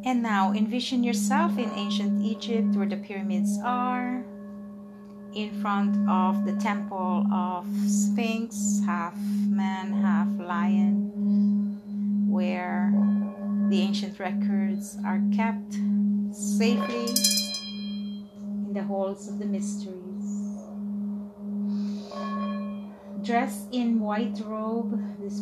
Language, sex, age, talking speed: English, female, 30-49, 95 wpm